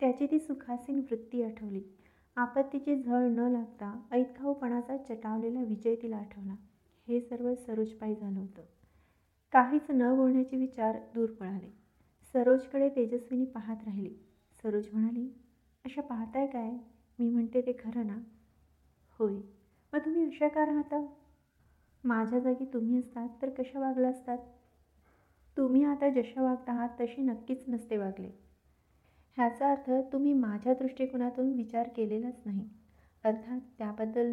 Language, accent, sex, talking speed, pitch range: Marathi, native, female, 125 wpm, 225-260 Hz